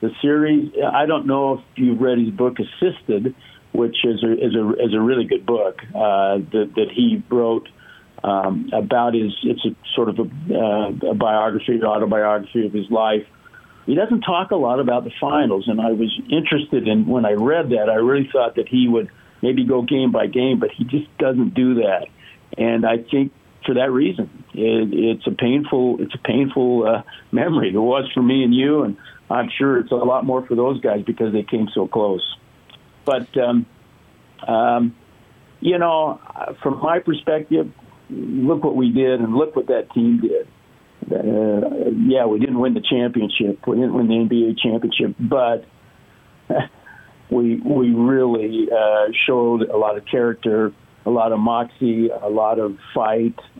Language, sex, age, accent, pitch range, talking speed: English, male, 50-69, American, 110-135 Hz, 180 wpm